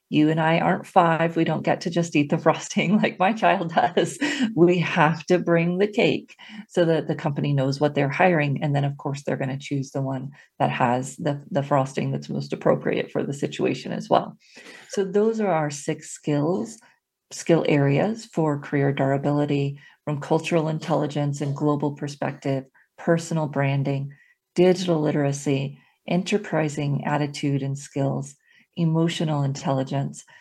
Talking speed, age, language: 160 wpm, 40-59, English